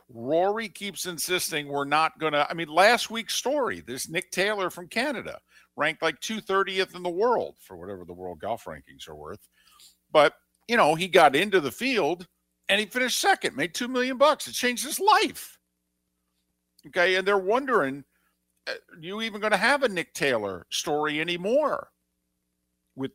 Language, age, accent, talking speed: English, 50-69, American, 175 wpm